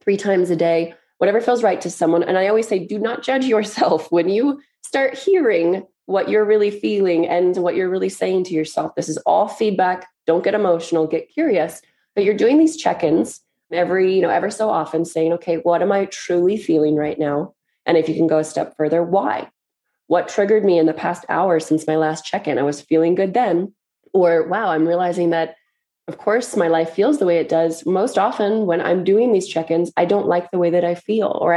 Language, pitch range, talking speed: English, 160-200 Hz, 220 wpm